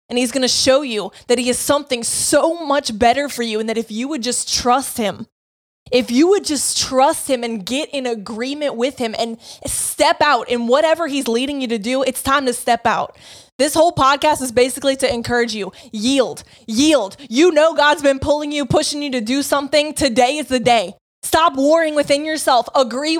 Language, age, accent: English, 20-39, American